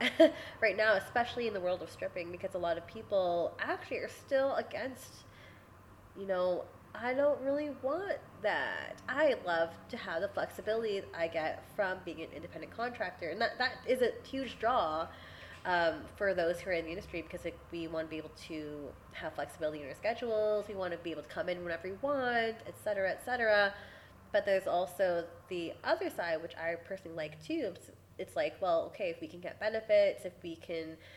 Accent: American